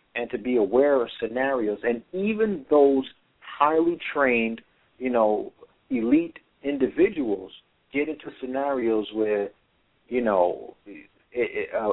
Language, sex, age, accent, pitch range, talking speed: English, male, 50-69, American, 115-150 Hz, 110 wpm